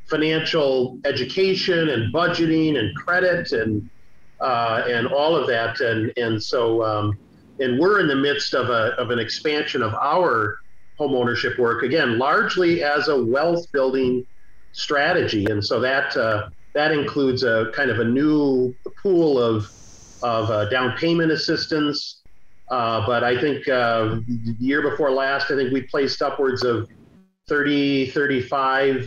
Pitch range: 115-140 Hz